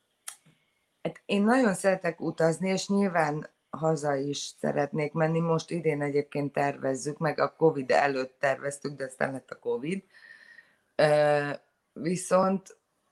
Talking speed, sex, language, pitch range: 115 wpm, female, Hungarian, 145-185 Hz